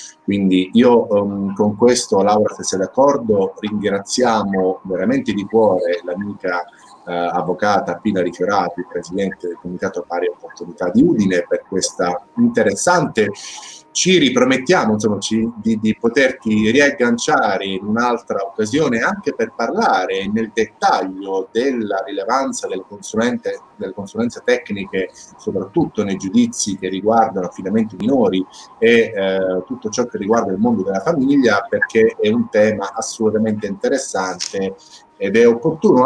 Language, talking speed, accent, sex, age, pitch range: Italian, 125 wpm, native, male, 30-49, 100-145 Hz